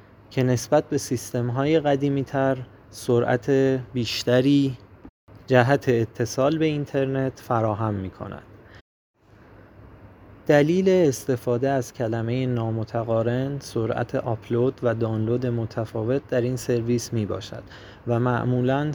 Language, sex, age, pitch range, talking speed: Persian, male, 30-49, 110-135 Hz, 100 wpm